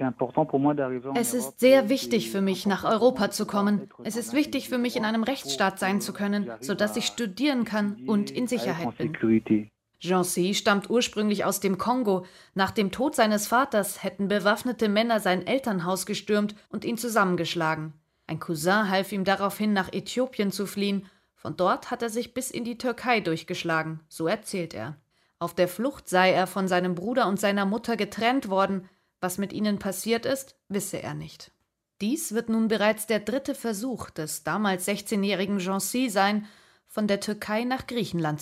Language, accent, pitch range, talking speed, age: German, German, 185-230 Hz, 170 wpm, 30-49